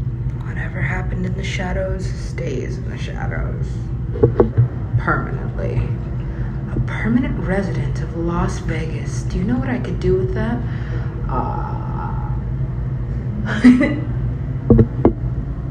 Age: 20-39